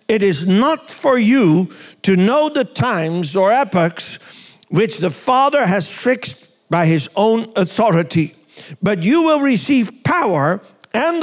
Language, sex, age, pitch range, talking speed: English, male, 60-79, 170-245 Hz, 140 wpm